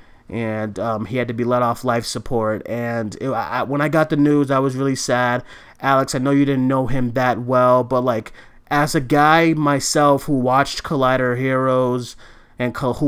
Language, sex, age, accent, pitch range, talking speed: English, male, 20-39, American, 120-140 Hz, 190 wpm